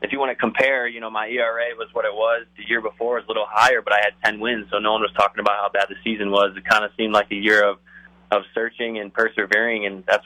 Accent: American